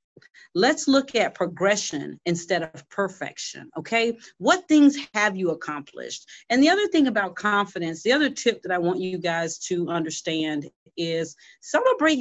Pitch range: 190-275 Hz